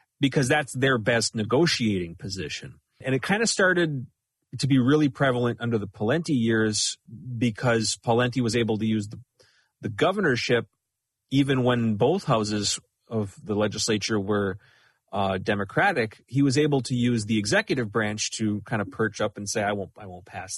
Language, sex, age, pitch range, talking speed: English, male, 30-49, 105-135 Hz, 170 wpm